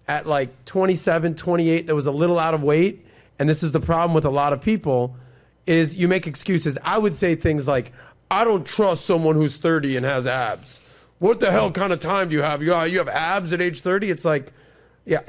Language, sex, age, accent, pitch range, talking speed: English, male, 30-49, American, 145-185 Hz, 225 wpm